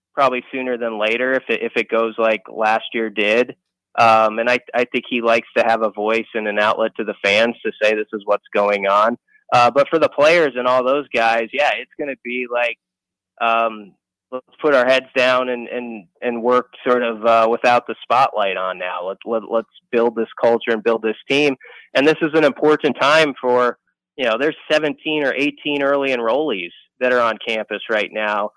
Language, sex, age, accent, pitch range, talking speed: English, male, 20-39, American, 110-135 Hz, 210 wpm